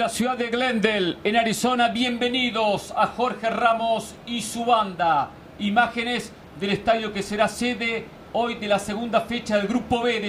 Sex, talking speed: male, 165 wpm